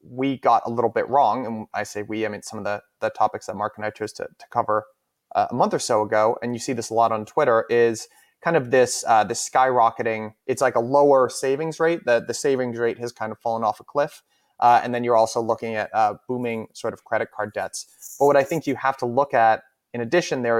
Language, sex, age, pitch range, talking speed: English, male, 30-49, 115-135 Hz, 260 wpm